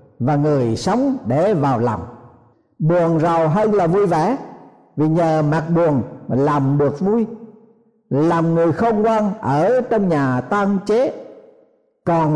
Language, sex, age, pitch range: Thai, male, 60-79, 140-225 Hz